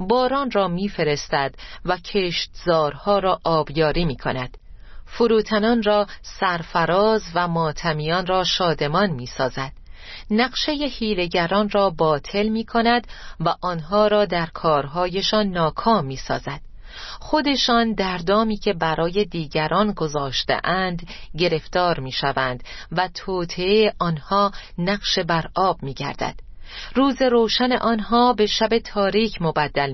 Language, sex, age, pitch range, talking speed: Persian, female, 40-59, 155-205 Hz, 105 wpm